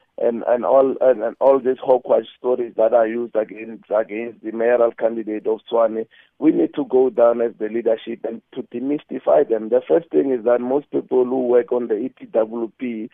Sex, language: male, English